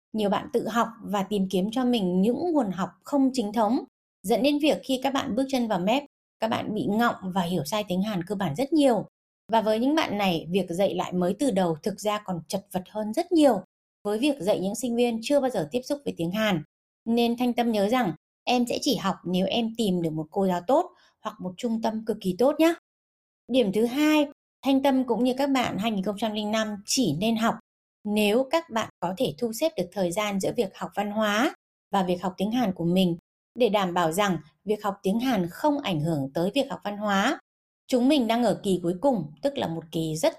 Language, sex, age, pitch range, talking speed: Vietnamese, female, 20-39, 185-255 Hz, 235 wpm